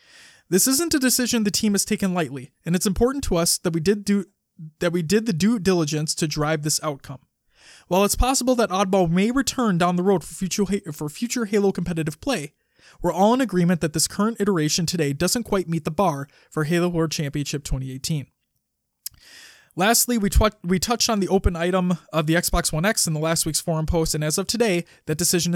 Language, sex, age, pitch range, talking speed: English, male, 20-39, 155-200 Hz, 195 wpm